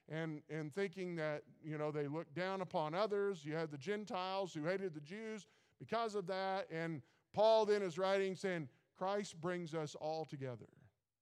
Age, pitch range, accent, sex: 50-69, 150-190 Hz, American, male